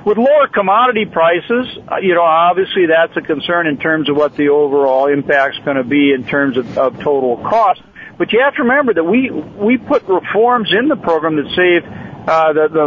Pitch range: 150-210 Hz